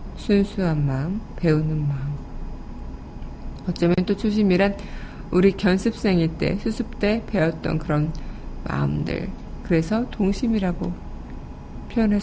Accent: native